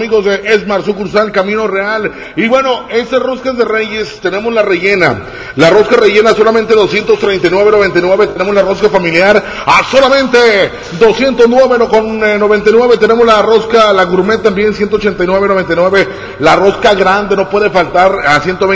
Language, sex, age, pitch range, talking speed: Spanish, male, 40-59, 175-215 Hz, 130 wpm